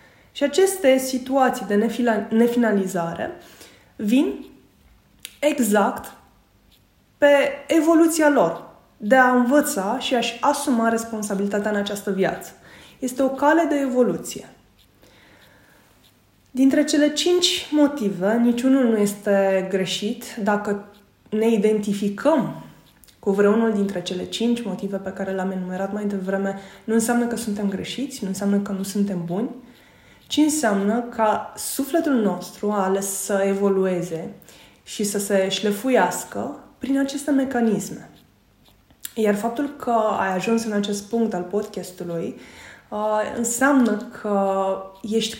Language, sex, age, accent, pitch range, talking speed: Romanian, female, 20-39, native, 195-245 Hz, 120 wpm